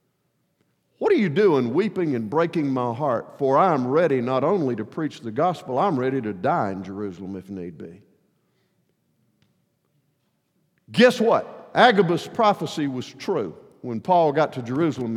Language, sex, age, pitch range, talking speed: English, male, 50-69, 125-210 Hz, 150 wpm